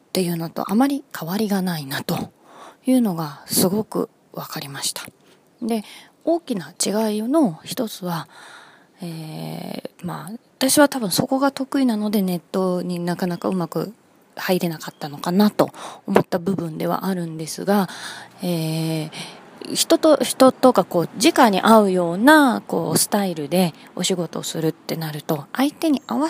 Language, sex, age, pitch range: Japanese, female, 20-39, 170-235 Hz